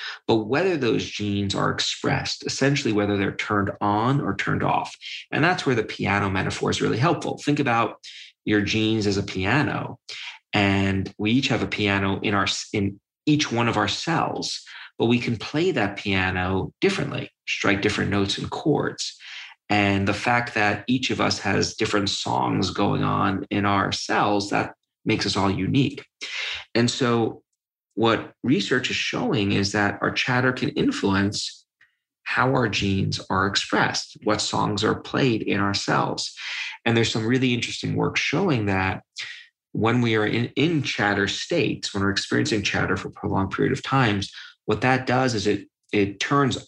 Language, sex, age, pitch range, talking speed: English, male, 30-49, 100-120 Hz, 170 wpm